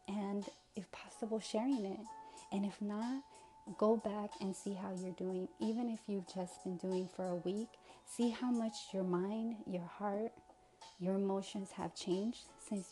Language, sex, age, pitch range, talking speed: English, female, 30-49, 185-220 Hz, 165 wpm